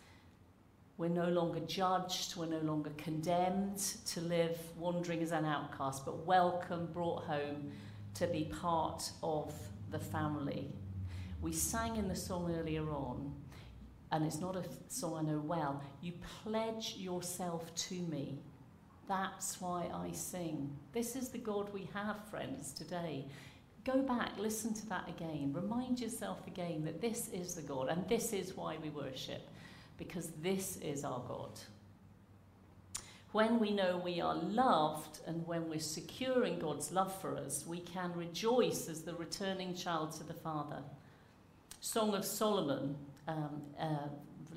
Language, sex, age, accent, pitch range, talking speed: English, female, 50-69, British, 145-180 Hz, 150 wpm